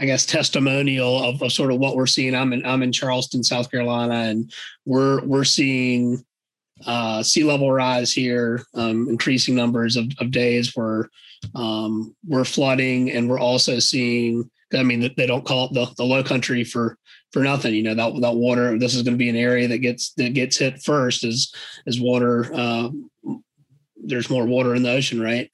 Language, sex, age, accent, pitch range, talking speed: English, male, 30-49, American, 120-140 Hz, 195 wpm